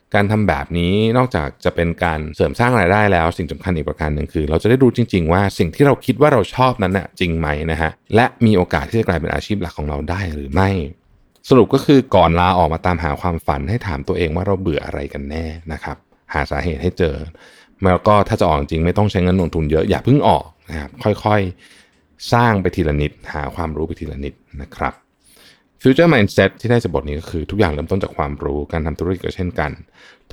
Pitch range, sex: 80-105 Hz, male